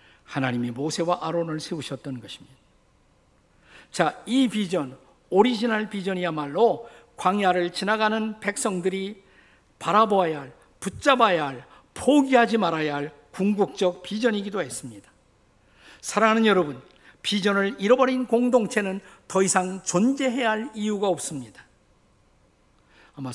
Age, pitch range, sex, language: 50-69, 145-200 Hz, male, Korean